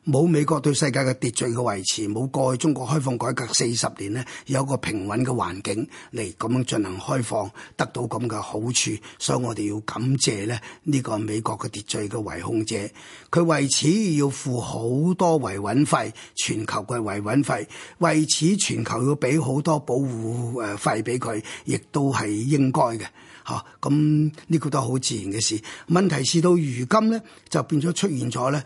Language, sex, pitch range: Chinese, male, 120-165 Hz